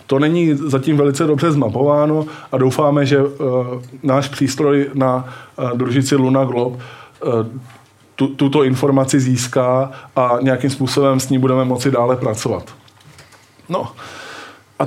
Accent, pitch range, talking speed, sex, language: native, 120-145 Hz, 135 wpm, male, Czech